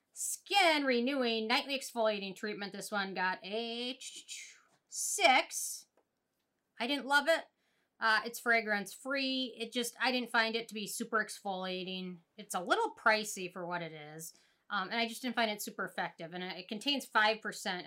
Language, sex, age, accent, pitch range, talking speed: English, female, 30-49, American, 185-255 Hz, 160 wpm